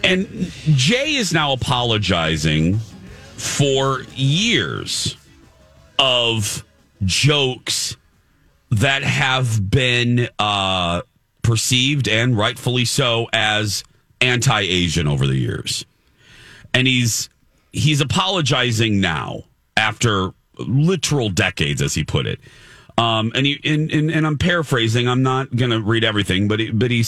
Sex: male